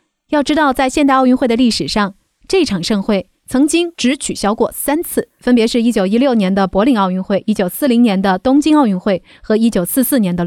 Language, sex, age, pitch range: Chinese, female, 20-39, 195-265 Hz